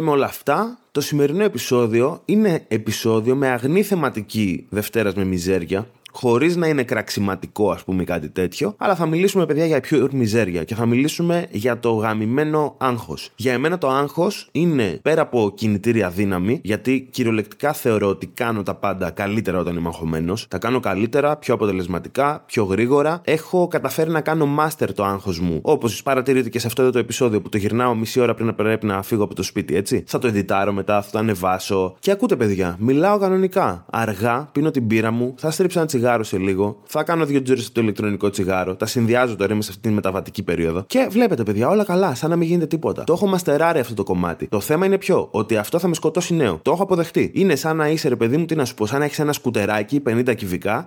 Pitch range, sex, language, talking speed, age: 100-155 Hz, male, Greek, 205 wpm, 20-39